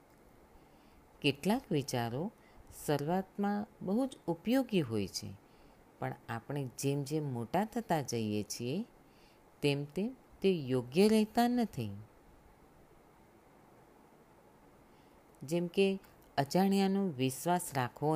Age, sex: 50-69, female